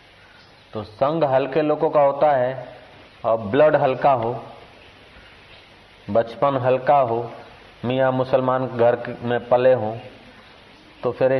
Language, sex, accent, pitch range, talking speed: Hindi, male, native, 105-135 Hz, 115 wpm